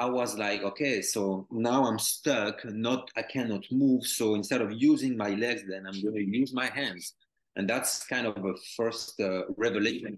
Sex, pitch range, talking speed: male, 95-120 Hz, 195 wpm